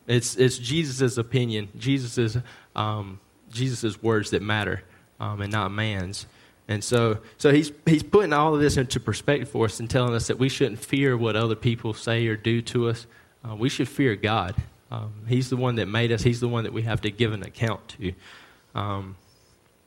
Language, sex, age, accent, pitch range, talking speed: English, male, 20-39, American, 105-125 Hz, 200 wpm